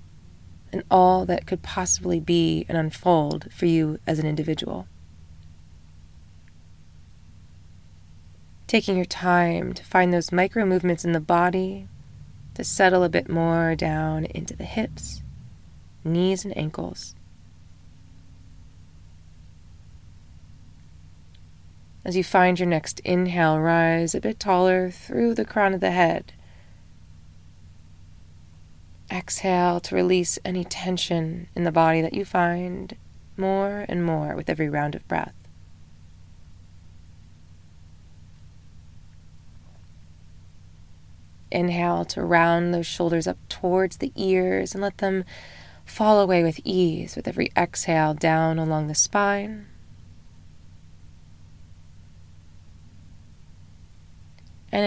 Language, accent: English, American